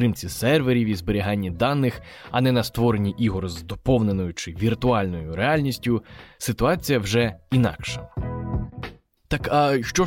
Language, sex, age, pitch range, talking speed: Ukrainian, male, 20-39, 100-130 Hz, 125 wpm